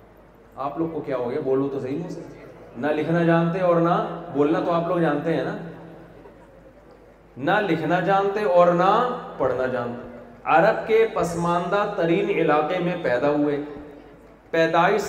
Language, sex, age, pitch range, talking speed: Urdu, male, 40-59, 170-230 Hz, 145 wpm